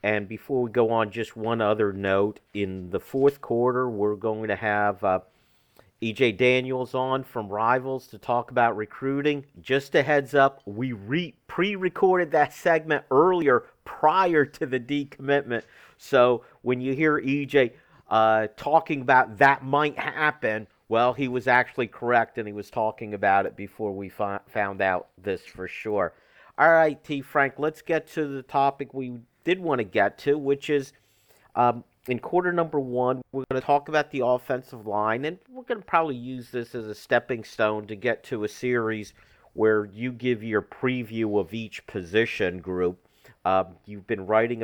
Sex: male